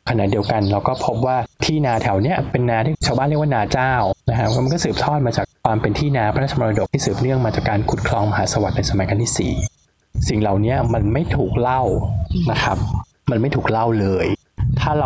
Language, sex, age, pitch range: Thai, male, 20-39, 105-135 Hz